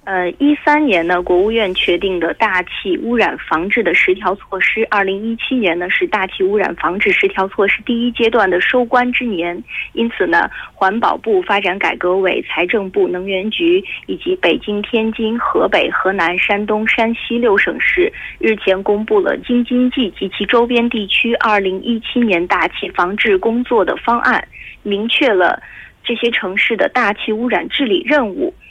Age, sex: 20-39, female